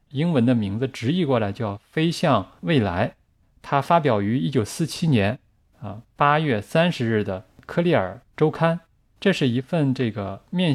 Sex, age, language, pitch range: male, 20-39, Chinese, 110-155 Hz